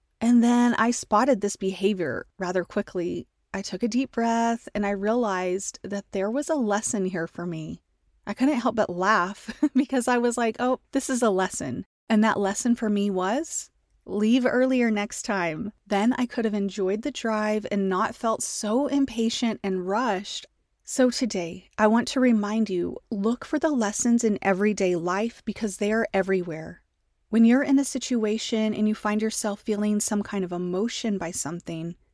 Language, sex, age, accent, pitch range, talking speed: English, female, 30-49, American, 195-240 Hz, 180 wpm